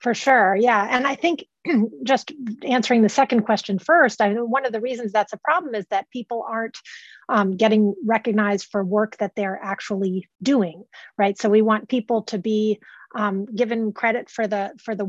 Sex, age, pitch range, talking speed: female, 30-49, 205-265 Hz, 195 wpm